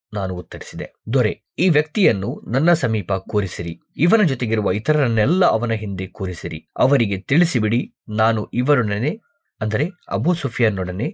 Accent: native